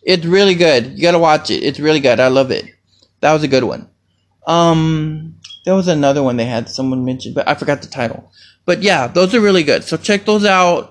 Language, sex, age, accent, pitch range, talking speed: English, male, 20-39, American, 140-185 Hz, 230 wpm